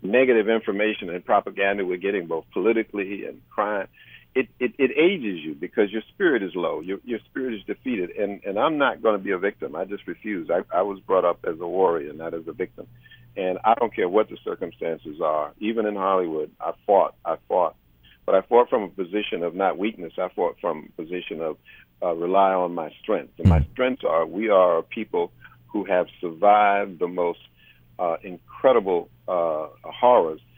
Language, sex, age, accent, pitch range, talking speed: English, male, 50-69, American, 95-120 Hz, 195 wpm